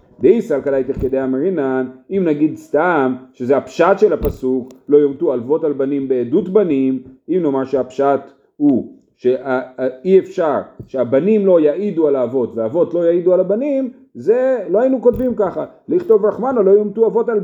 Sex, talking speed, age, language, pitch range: male, 155 wpm, 40-59, Hebrew, 135-220 Hz